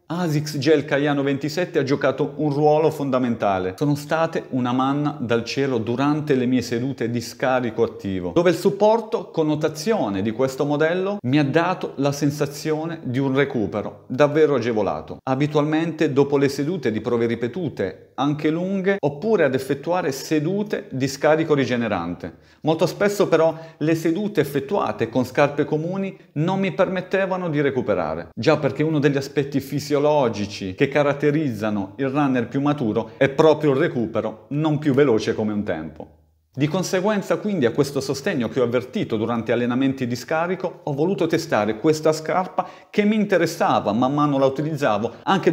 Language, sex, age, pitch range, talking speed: Italian, male, 40-59, 130-165 Hz, 155 wpm